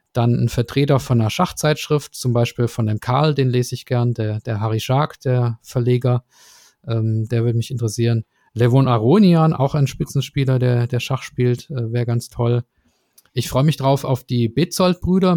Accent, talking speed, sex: German, 180 wpm, male